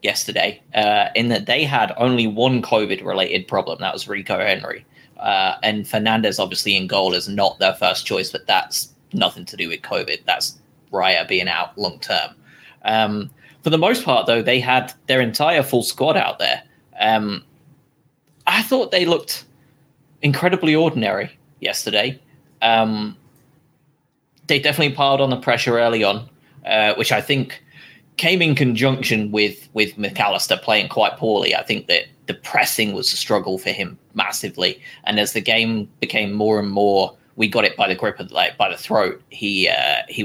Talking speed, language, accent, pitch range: 170 wpm, English, British, 110-145 Hz